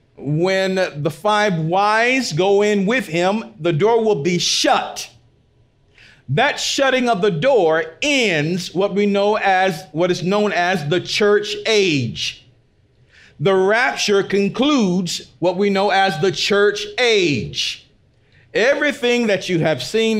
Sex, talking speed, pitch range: male, 135 wpm, 150-210 Hz